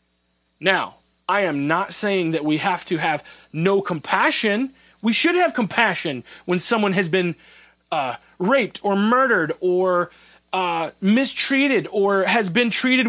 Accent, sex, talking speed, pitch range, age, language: American, male, 140 wpm, 155-235 Hz, 30-49, English